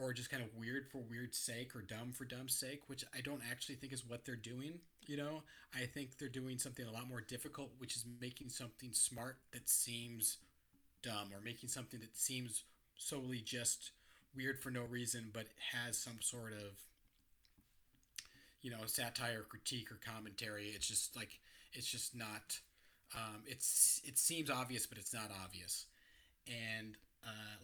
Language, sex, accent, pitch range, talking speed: English, male, American, 110-130 Hz, 175 wpm